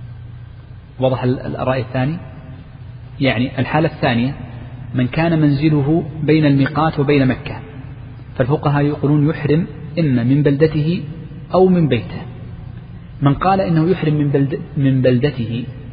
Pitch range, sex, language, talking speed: 125-145 Hz, male, Arabic, 115 wpm